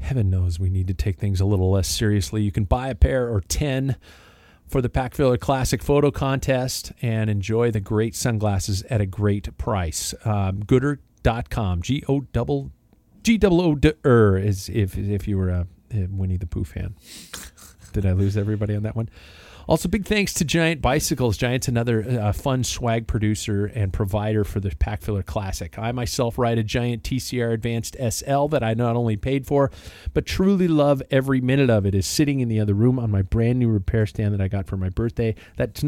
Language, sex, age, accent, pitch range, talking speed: English, male, 40-59, American, 100-125 Hz, 195 wpm